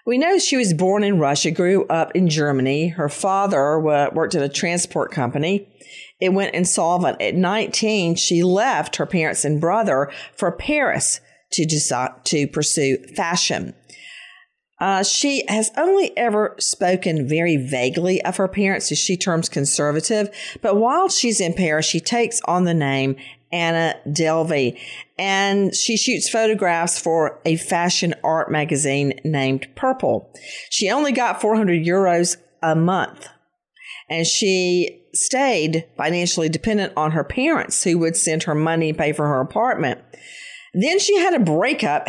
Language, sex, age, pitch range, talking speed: English, female, 50-69, 155-210 Hz, 145 wpm